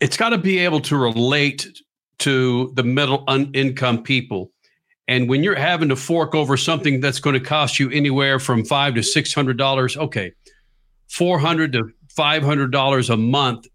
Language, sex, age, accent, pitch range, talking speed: English, male, 50-69, American, 125-160 Hz, 185 wpm